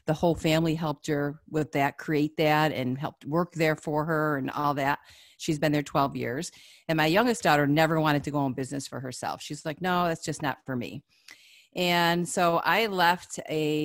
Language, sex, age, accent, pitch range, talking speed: English, female, 40-59, American, 140-165 Hz, 210 wpm